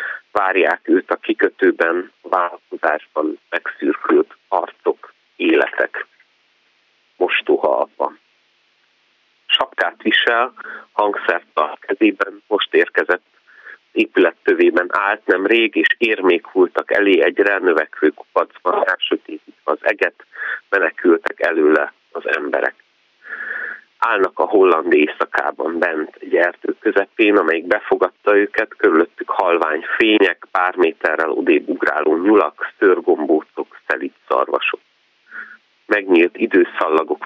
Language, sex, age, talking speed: Hungarian, male, 30-49, 95 wpm